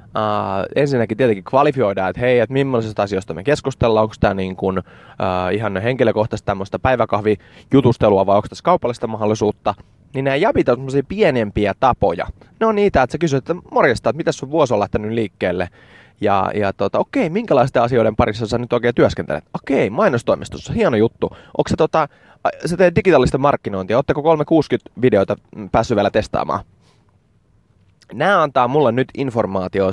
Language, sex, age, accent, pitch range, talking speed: English, male, 20-39, Finnish, 105-135 Hz, 150 wpm